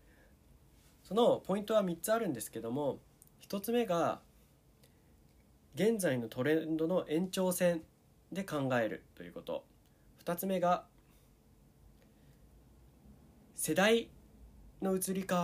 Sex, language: male, Japanese